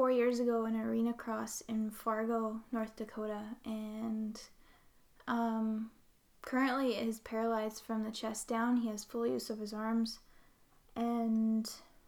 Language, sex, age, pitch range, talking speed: English, female, 10-29, 225-245 Hz, 130 wpm